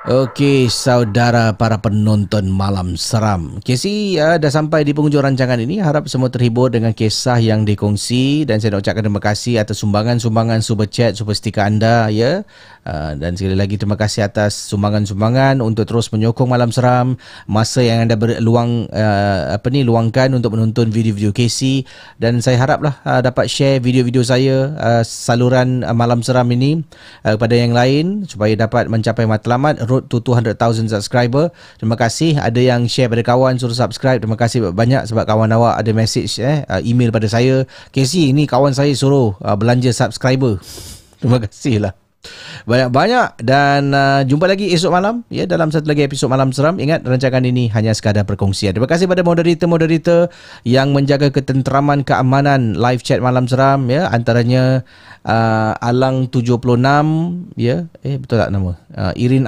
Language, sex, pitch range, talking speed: Malay, male, 110-135 Hz, 165 wpm